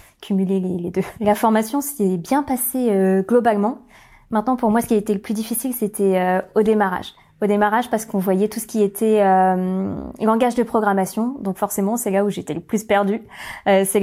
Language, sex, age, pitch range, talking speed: French, female, 20-39, 195-230 Hz, 205 wpm